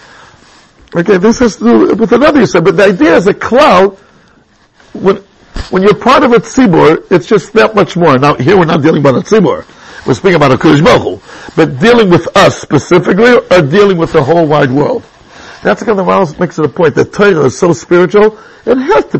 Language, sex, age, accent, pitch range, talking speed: English, male, 60-79, American, 160-220 Hz, 215 wpm